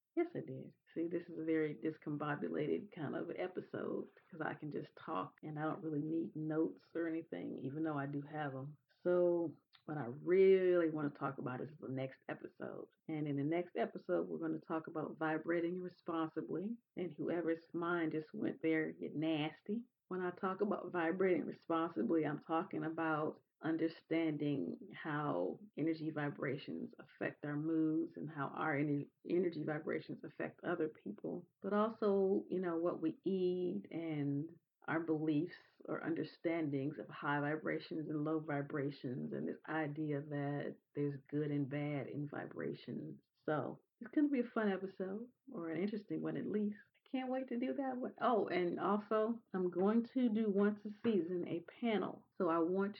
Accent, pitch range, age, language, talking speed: American, 155-190 Hz, 40-59, English, 170 wpm